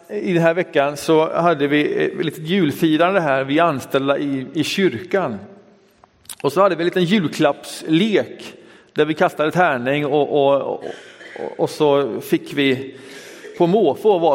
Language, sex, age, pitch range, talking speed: Swedish, male, 40-59, 140-200 Hz, 145 wpm